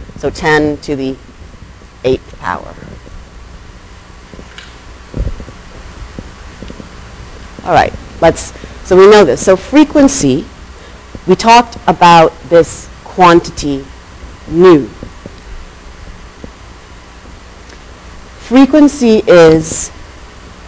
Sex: female